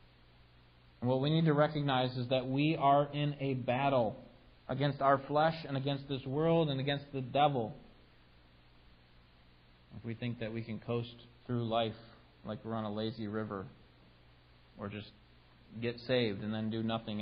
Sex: male